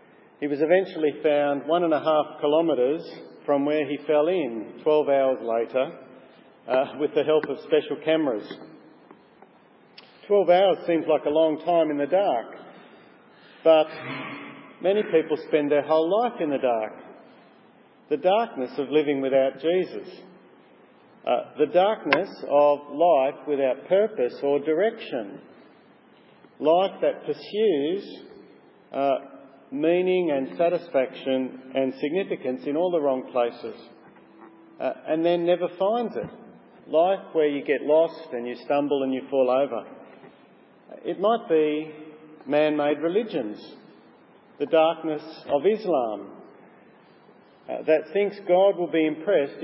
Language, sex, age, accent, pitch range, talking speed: English, male, 50-69, Australian, 145-175 Hz, 130 wpm